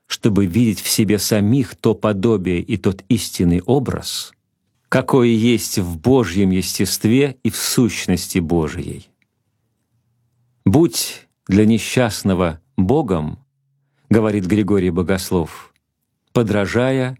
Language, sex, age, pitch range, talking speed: Russian, male, 50-69, 95-115 Hz, 100 wpm